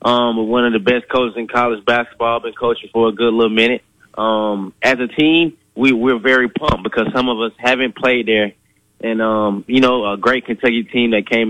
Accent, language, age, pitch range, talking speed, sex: American, English, 20-39, 105-120 Hz, 220 wpm, male